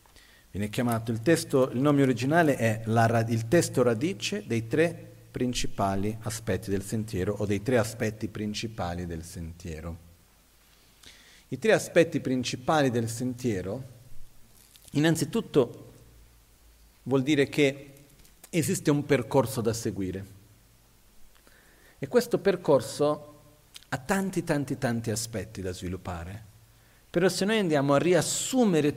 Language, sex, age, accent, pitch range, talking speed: Italian, male, 40-59, native, 110-140 Hz, 115 wpm